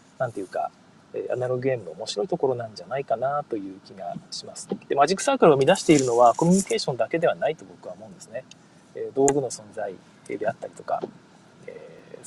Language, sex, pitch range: Japanese, male, 140-225 Hz